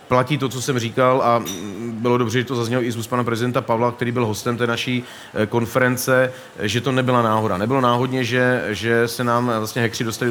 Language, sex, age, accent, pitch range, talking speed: Czech, male, 40-59, native, 115-130 Hz, 205 wpm